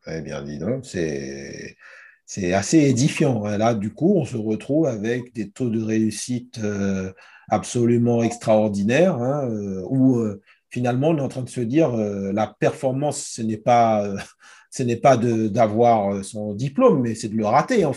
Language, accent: French, French